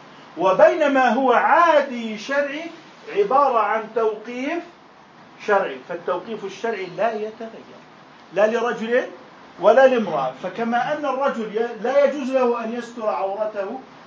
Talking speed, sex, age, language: 105 wpm, male, 40-59, Arabic